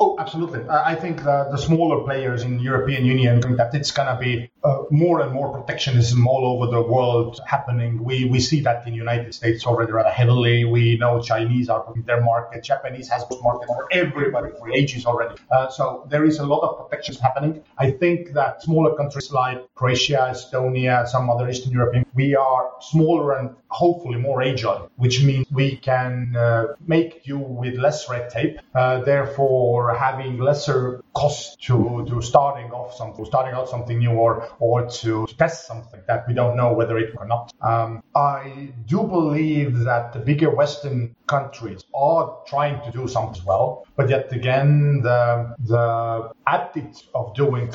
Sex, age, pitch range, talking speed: male, 40-59, 120-140 Hz, 180 wpm